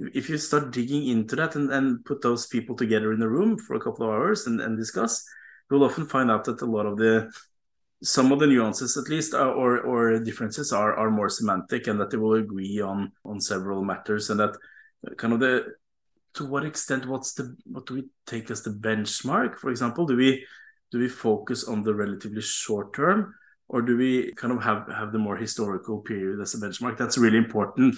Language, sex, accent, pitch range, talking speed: German, male, Norwegian, 105-135 Hz, 215 wpm